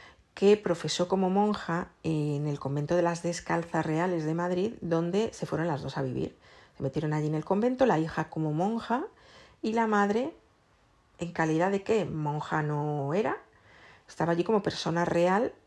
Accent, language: Spanish, Spanish